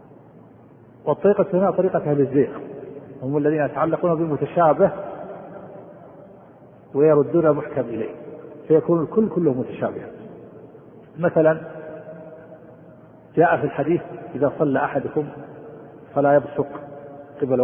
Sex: male